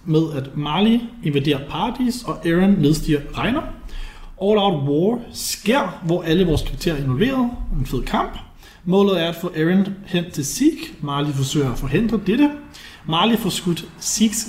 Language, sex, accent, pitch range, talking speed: Danish, male, native, 150-200 Hz, 155 wpm